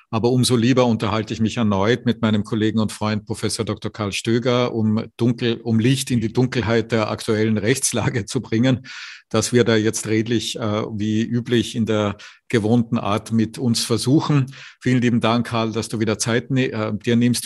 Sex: male